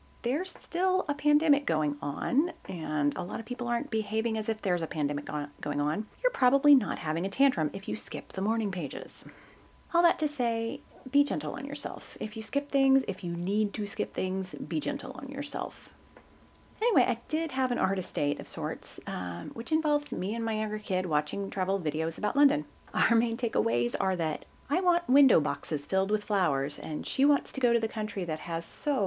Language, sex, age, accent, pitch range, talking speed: English, female, 30-49, American, 175-275 Hz, 205 wpm